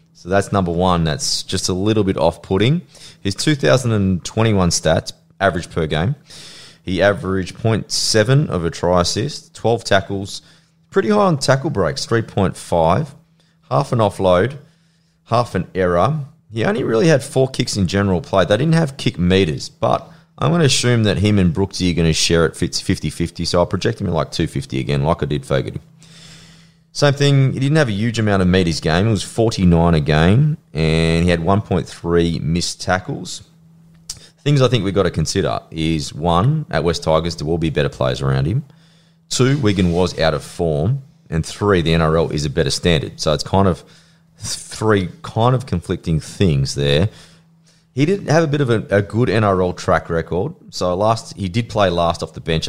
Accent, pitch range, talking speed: Australian, 90-145 Hz, 190 wpm